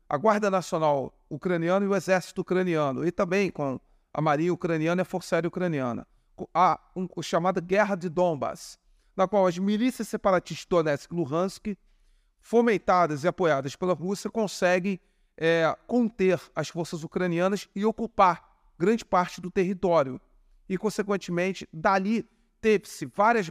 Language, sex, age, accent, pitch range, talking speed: Portuguese, male, 40-59, Brazilian, 170-210 Hz, 135 wpm